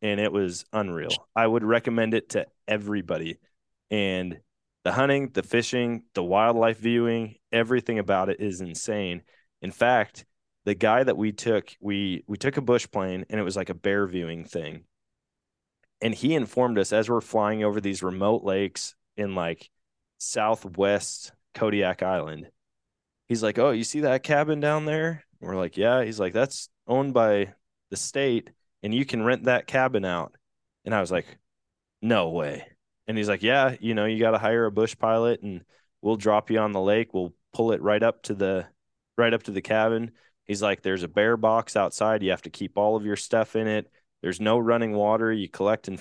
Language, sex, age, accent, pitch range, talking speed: English, male, 20-39, American, 100-115 Hz, 195 wpm